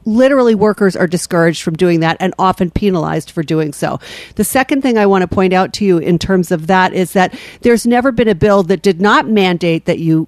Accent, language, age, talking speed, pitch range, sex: American, English, 50-69, 235 wpm, 185-230 Hz, female